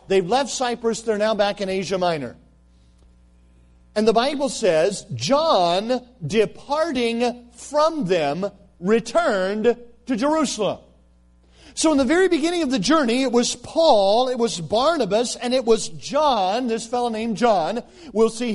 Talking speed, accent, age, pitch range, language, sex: 140 wpm, American, 40-59, 205-290 Hz, English, male